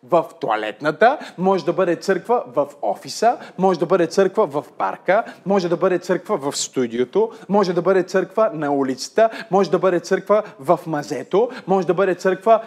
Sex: male